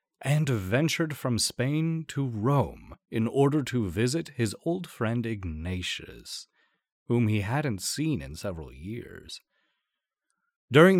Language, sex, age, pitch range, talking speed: English, male, 30-49, 100-135 Hz, 120 wpm